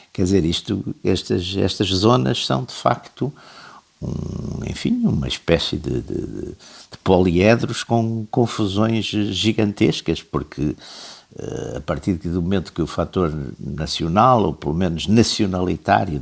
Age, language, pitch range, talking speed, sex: 50-69, Portuguese, 75-100 Hz, 115 wpm, male